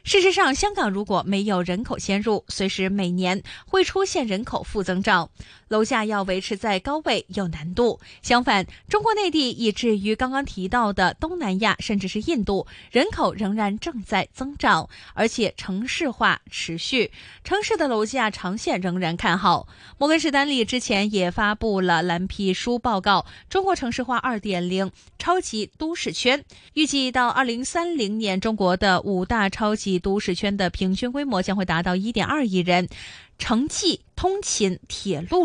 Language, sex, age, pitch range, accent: Chinese, female, 20-39, 190-260 Hz, native